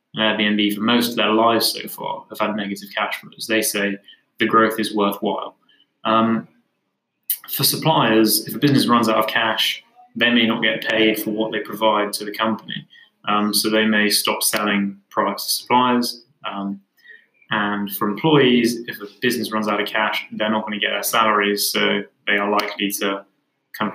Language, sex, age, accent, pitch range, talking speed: English, male, 20-39, British, 105-115 Hz, 185 wpm